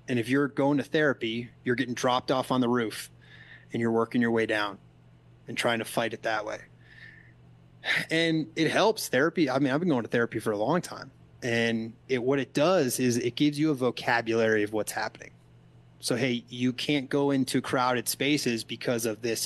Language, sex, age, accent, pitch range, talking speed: English, male, 30-49, American, 110-135 Hz, 205 wpm